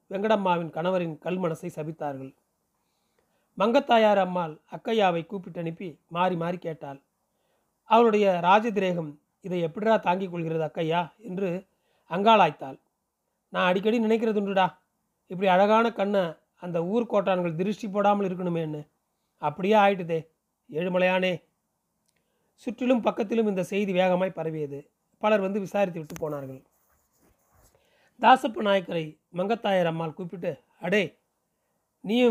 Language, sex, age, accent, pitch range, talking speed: Tamil, male, 30-49, native, 170-210 Hz, 100 wpm